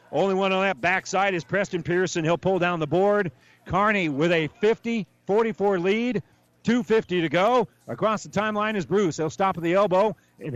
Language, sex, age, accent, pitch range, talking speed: English, male, 40-59, American, 155-200 Hz, 175 wpm